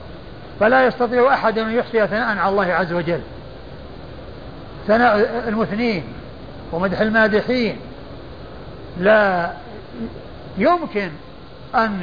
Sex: male